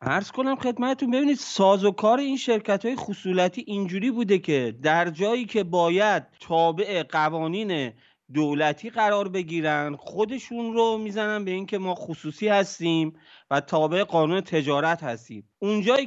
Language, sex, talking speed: Persian, male, 140 wpm